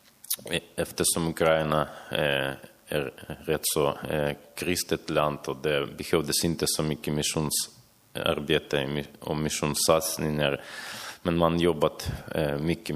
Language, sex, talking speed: Swedish, male, 105 wpm